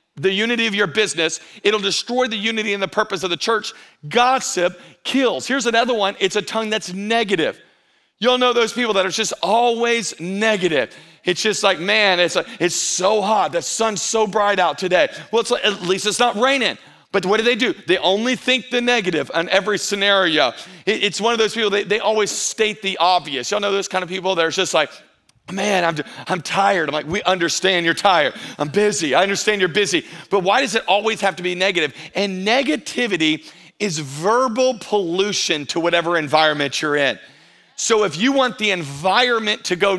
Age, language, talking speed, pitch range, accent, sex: 40-59, English, 200 wpm, 180-225 Hz, American, male